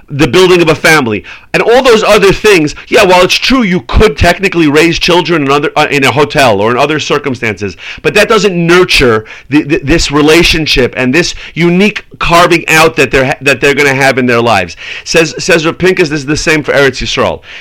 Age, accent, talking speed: 40-59, American, 215 wpm